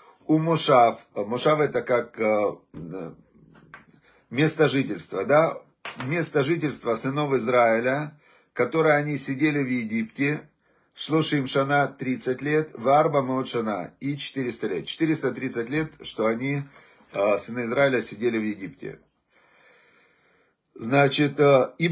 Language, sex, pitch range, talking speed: Russian, male, 125-155 Hz, 110 wpm